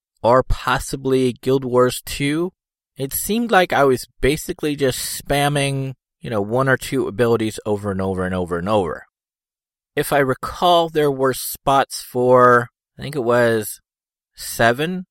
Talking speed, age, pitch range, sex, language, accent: 150 wpm, 30-49, 100-135 Hz, male, English, American